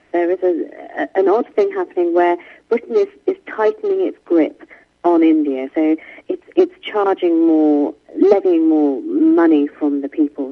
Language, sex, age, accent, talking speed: English, female, 40-59, British, 160 wpm